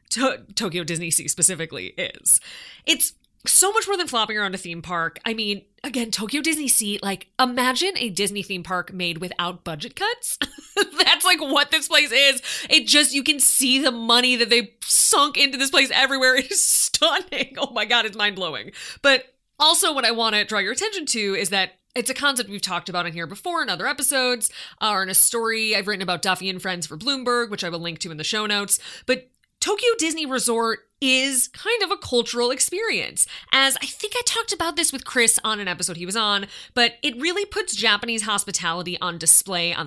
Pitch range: 200-290 Hz